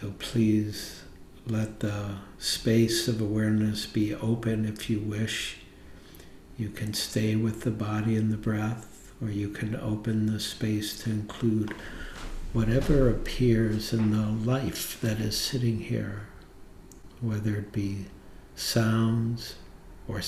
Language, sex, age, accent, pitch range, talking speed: English, male, 60-79, American, 105-115 Hz, 125 wpm